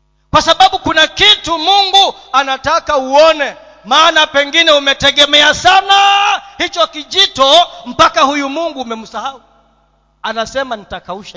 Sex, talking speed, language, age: male, 100 wpm, Swahili, 30-49